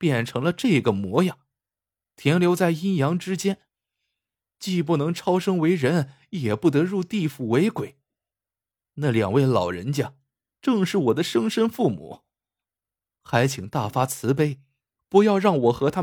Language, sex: Chinese, male